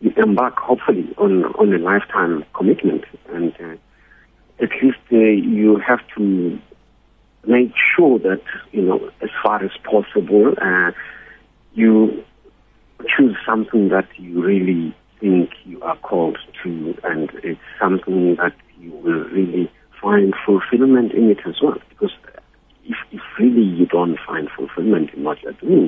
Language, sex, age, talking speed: English, male, 50-69, 145 wpm